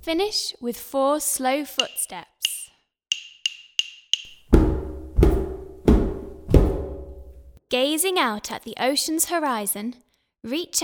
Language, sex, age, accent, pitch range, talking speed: English, female, 10-29, British, 205-320 Hz, 65 wpm